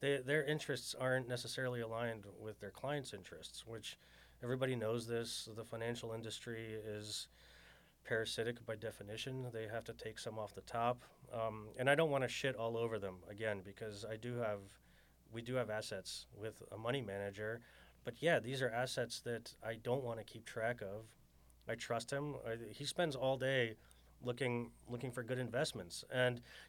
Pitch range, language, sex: 110-125 Hz, English, male